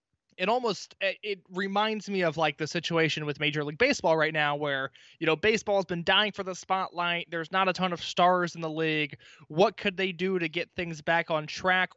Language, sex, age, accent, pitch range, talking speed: English, male, 20-39, American, 160-195 Hz, 220 wpm